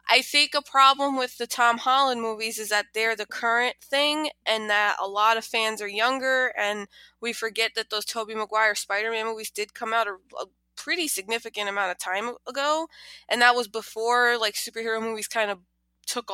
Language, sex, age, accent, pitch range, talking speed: English, female, 20-39, American, 210-275 Hz, 195 wpm